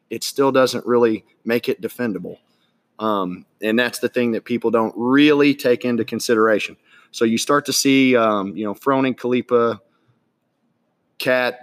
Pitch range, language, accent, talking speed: 105-125 Hz, English, American, 155 wpm